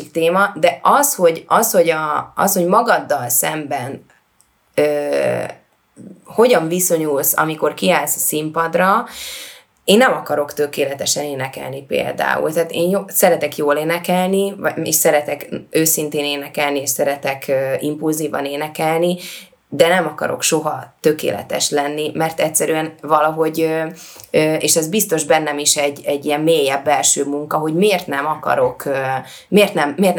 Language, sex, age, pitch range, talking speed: Hungarian, female, 20-39, 150-175 Hz, 125 wpm